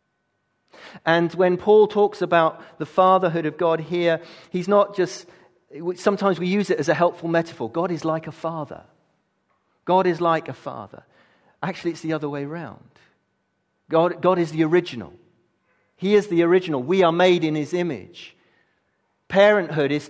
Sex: male